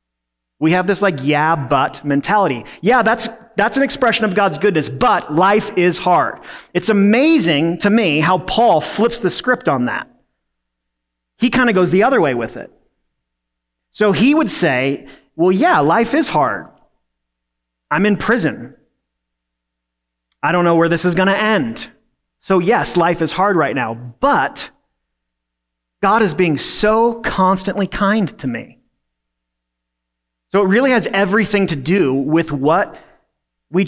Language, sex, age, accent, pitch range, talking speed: English, male, 30-49, American, 140-205 Hz, 150 wpm